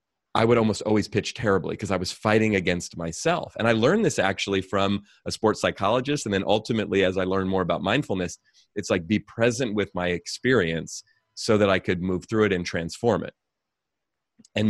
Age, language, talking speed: 30-49, English, 195 wpm